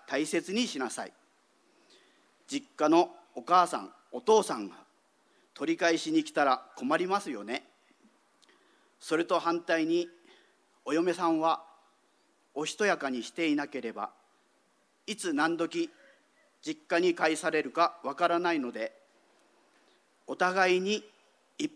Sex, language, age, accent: male, Japanese, 40-59, native